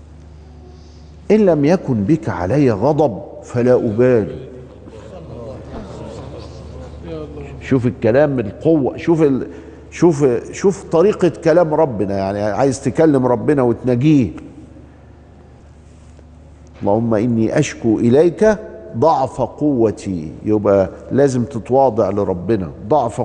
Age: 50-69